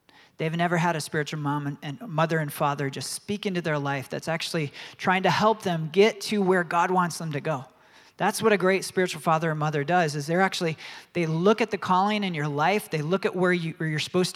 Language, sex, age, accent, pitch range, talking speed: English, male, 40-59, American, 155-190 Hz, 240 wpm